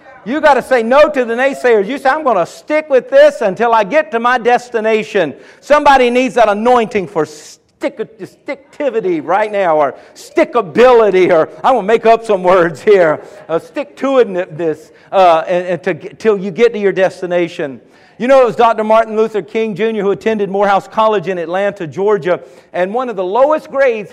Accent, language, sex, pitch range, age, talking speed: American, English, male, 195-240 Hz, 50-69, 180 wpm